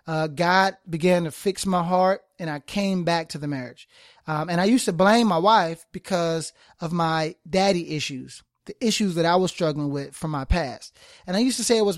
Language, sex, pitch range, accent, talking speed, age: English, male, 165-210 Hz, American, 220 wpm, 30-49